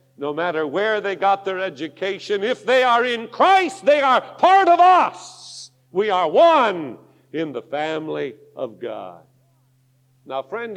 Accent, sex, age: American, male, 50-69